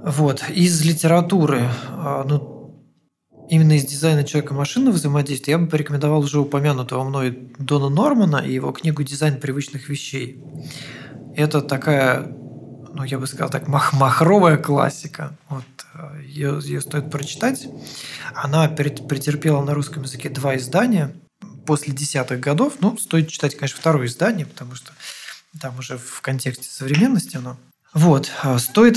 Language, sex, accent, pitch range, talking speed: Russian, male, native, 135-160 Hz, 130 wpm